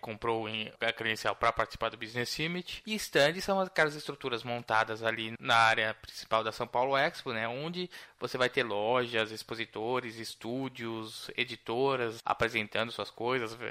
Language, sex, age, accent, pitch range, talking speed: Portuguese, male, 20-39, Brazilian, 110-130 Hz, 150 wpm